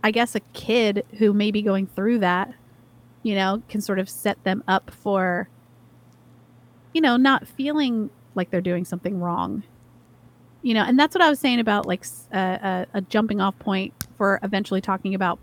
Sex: female